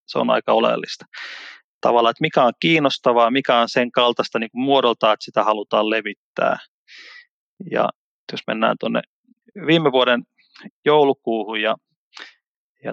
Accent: native